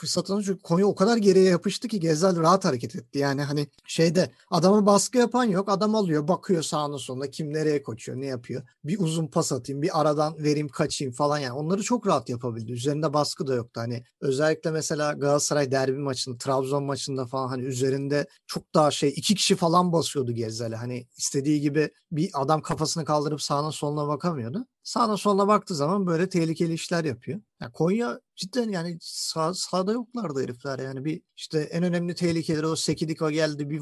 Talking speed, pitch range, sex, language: 185 wpm, 145-195 Hz, male, Turkish